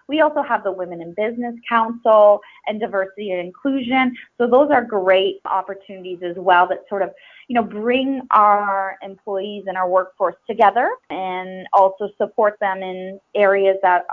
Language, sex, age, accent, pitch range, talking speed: English, female, 20-39, American, 185-230 Hz, 160 wpm